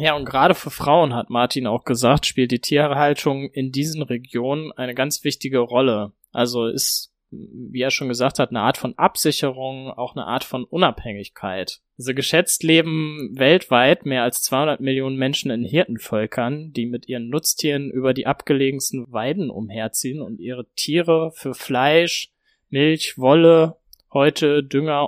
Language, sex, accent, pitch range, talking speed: German, male, German, 125-150 Hz, 155 wpm